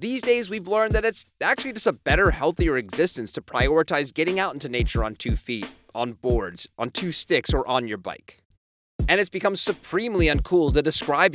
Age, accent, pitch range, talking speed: 30-49, American, 115-195 Hz, 195 wpm